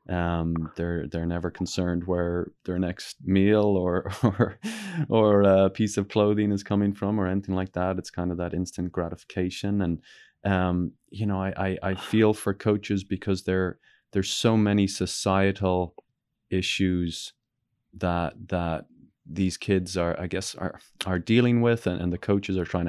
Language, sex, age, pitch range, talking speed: English, male, 20-39, 90-105 Hz, 165 wpm